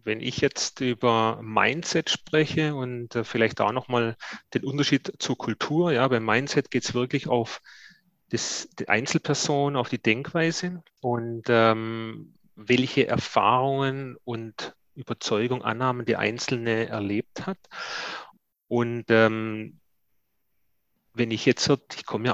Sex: male